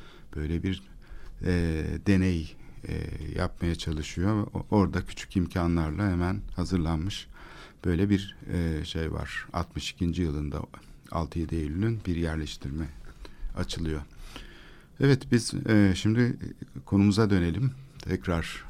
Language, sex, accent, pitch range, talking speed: Turkish, male, native, 85-100 Hz, 105 wpm